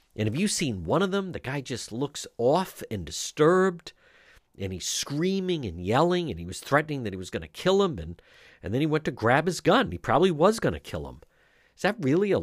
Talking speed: 240 wpm